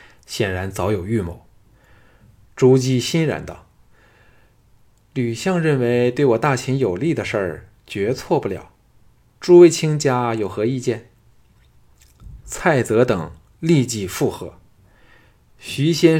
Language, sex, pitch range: Chinese, male, 105-135 Hz